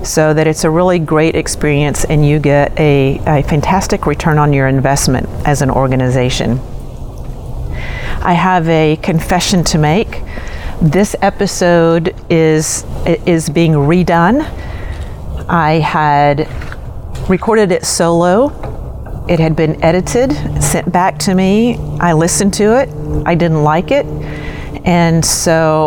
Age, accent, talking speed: 40-59, American, 130 wpm